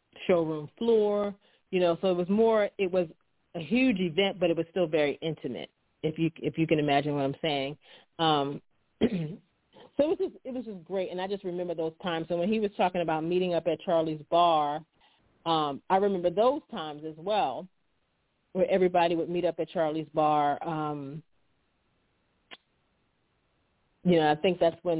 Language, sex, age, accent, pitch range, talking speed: English, female, 40-59, American, 150-185 Hz, 180 wpm